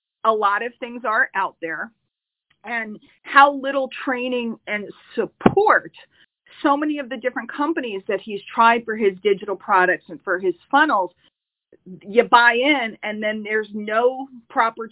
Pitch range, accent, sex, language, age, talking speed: 200-250 Hz, American, female, English, 40-59, 155 wpm